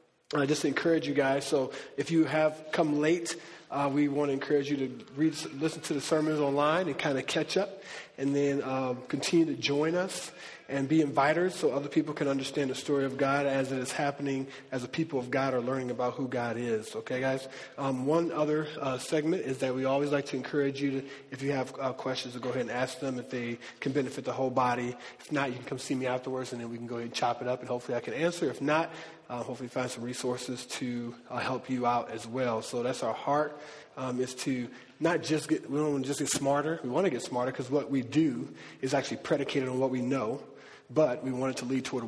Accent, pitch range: American, 130-155 Hz